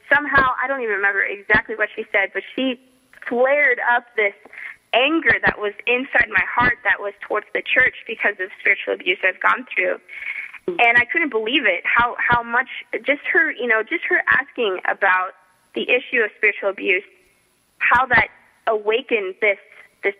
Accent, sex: American, female